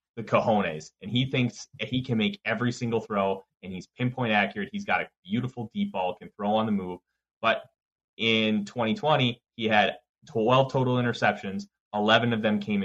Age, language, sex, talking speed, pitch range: 30-49, English, male, 180 wpm, 105-125 Hz